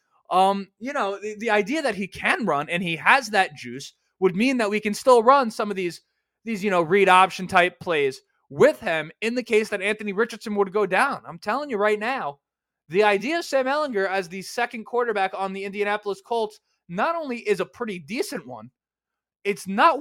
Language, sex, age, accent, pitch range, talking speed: English, male, 20-39, American, 185-245 Hz, 210 wpm